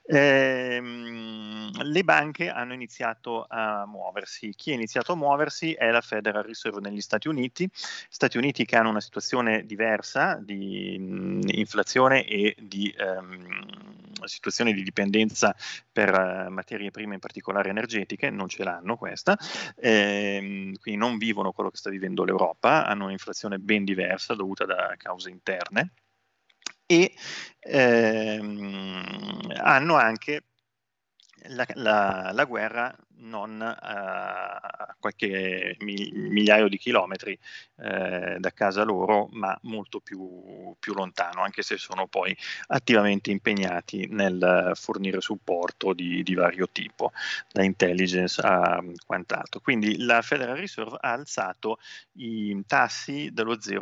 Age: 30-49